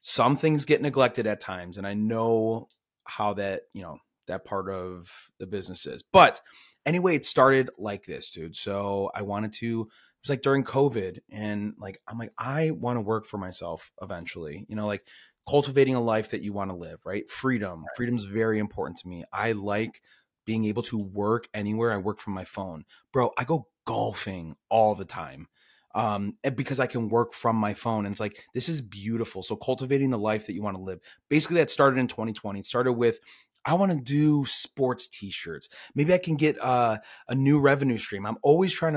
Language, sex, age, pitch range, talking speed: English, male, 30-49, 100-130 Hz, 205 wpm